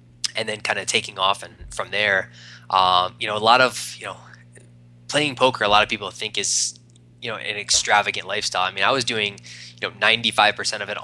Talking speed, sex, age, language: 215 wpm, male, 20-39, English